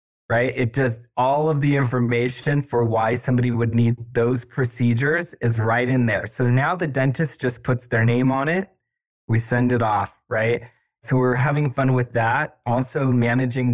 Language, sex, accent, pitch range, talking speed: English, male, American, 120-140 Hz, 180 wpm